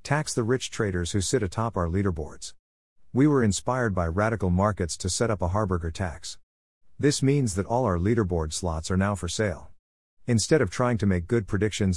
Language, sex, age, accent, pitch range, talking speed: English, male, 50-69, American, 90-115 Hz, 195 wpm